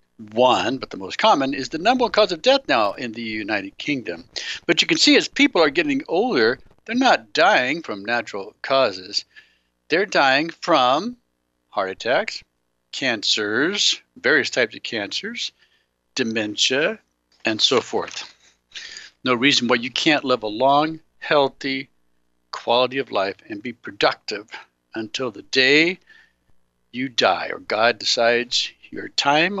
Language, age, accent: English, 60-79, American